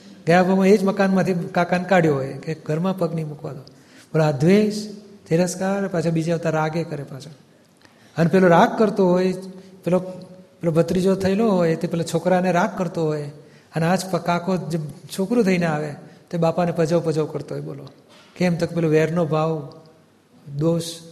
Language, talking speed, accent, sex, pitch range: Gujarati, 160 wpm, native, male, 155-180 Hz